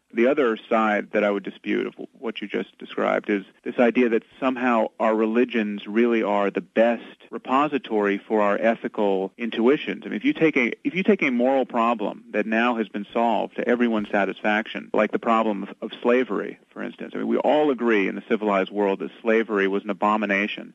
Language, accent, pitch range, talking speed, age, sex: English, American, 105-125 Hz, 200 wpm, 40-59, male